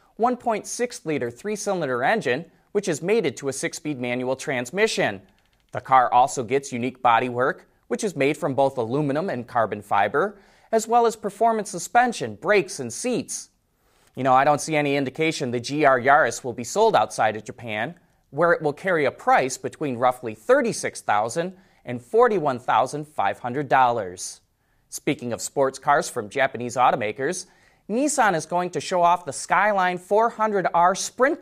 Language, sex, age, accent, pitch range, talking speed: English, male, 30-49, American, 130-195 Hz, 150 wpm